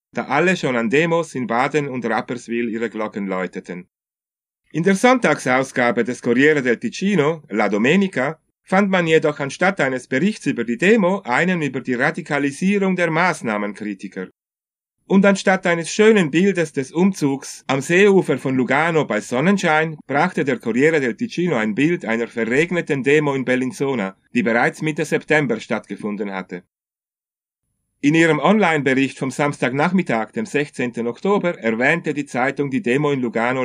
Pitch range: 120-165 Hz